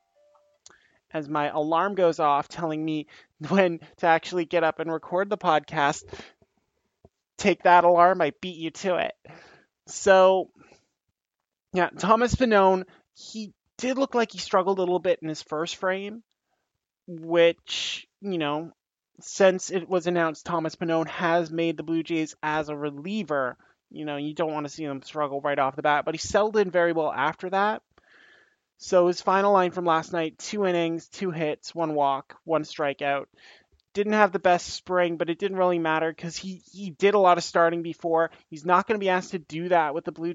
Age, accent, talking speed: 20-39, American, 185 wpm